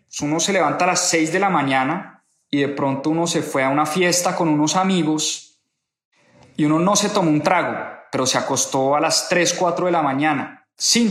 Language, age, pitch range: Spanish, 20-39, 150-190 Hz